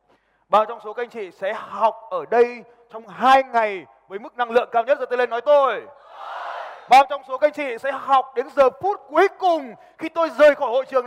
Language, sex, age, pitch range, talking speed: Vietnamese, male, 20-39, 225-315 Hz, 235 wpm